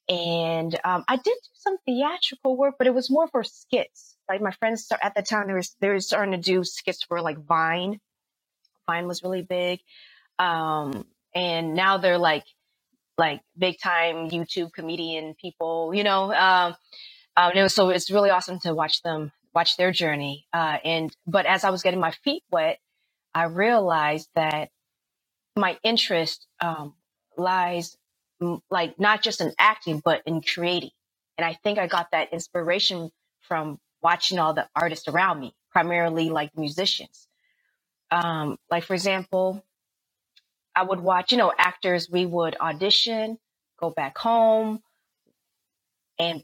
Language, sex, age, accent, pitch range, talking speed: English, female, 30-49, American, 165-200 Hz, 155 wpm